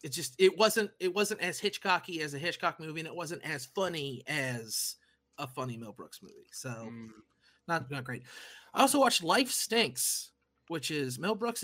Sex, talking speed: male, 185 wpm